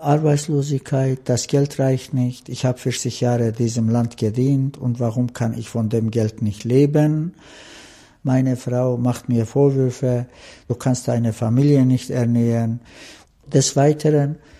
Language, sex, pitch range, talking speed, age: German, male, 125-150 Hz, 140 wpm, 60-79